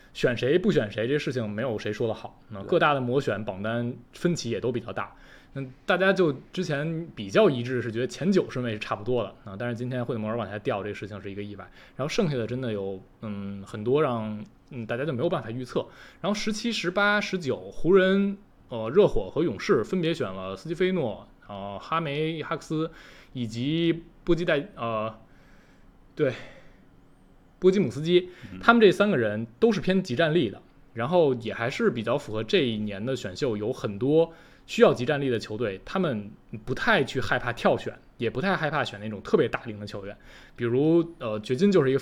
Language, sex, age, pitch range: Chinese, male, 20-39, 105-165 Hz